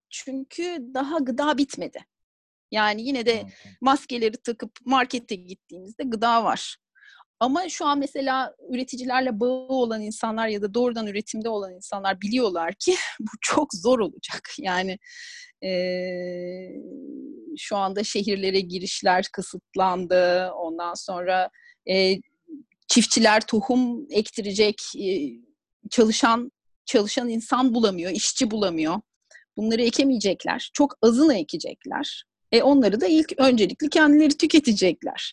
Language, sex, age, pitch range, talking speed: Turkish, female, 30-49, 210-290 Hz, 110 wpm